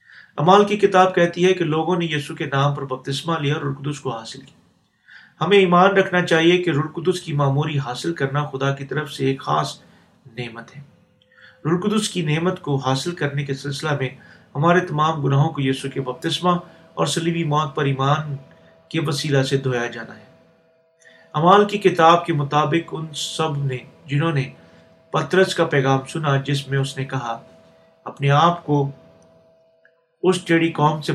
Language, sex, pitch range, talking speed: Urdu, male, 140-170 Hz, 175 wpm